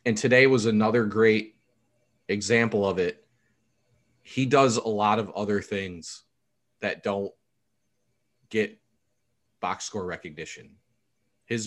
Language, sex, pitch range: English, male, 105-120 Hz